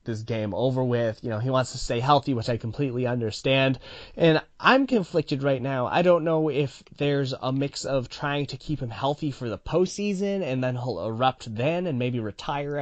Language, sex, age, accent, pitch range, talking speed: English, male, 20-39, American, 110-145 Hz, 205 wpm